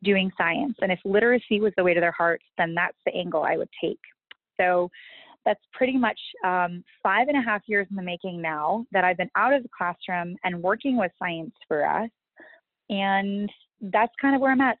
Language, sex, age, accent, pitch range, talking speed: English, female, 20-39, American, 175-225 Hz, 210 wpm